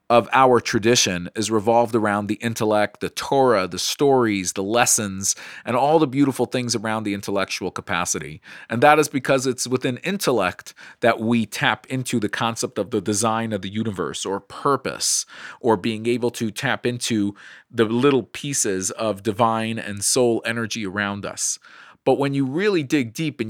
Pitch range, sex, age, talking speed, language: 105-130 Hz, male, 40-59, 170 wpm, English